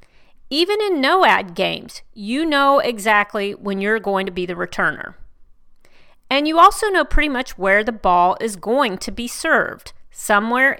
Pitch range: 200-275 Hz